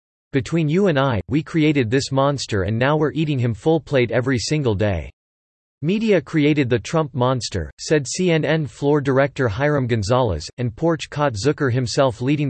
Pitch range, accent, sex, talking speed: 115-150 Hz, American, male, 170 wpm